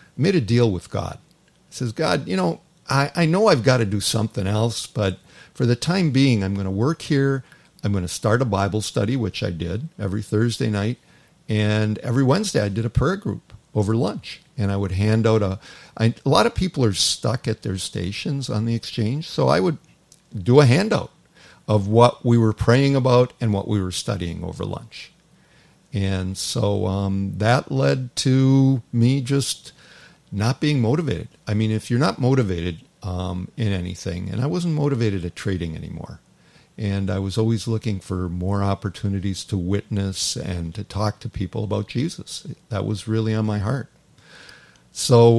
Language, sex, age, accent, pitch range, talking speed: English, male, 50-69, American, 100-130 Hz, 185 wpm